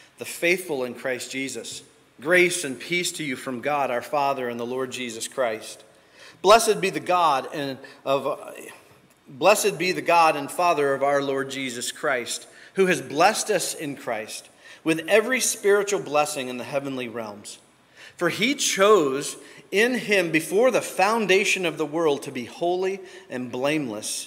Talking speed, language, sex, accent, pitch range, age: 165 wpm, English, male, American, 125-170 Hz, 40-59